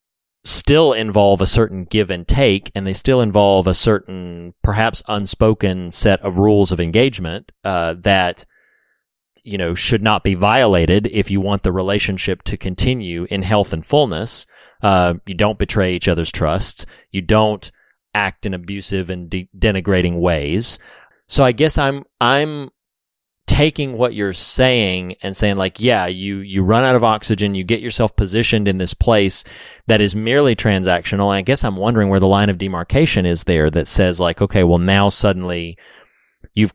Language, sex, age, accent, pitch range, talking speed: English, male, 30-49, American, 90-110 Hz, 170 wpm